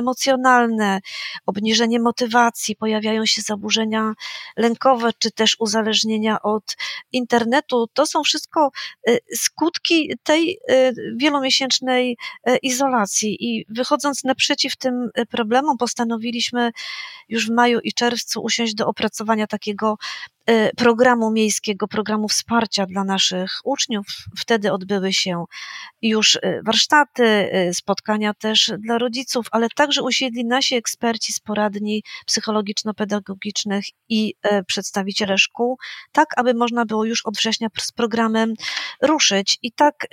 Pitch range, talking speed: 215-250 Hz, 110 wpm